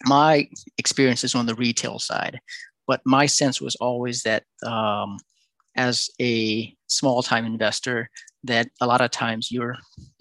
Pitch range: 110-125 Hz